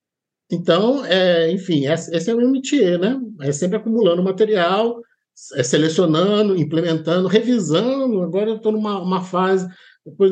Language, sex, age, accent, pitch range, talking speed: Portuguese, male, 50-69, Brazilian, 150-200 Hz, 135 wpm